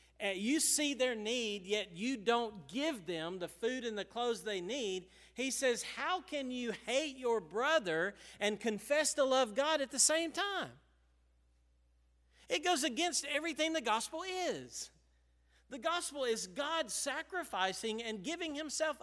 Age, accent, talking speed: 40-59, American, 150 wpm